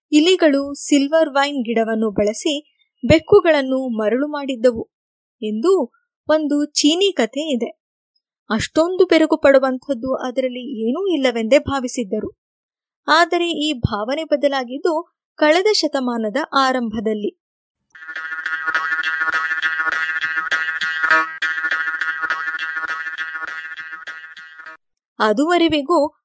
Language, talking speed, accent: Kannada, 65 wpm, native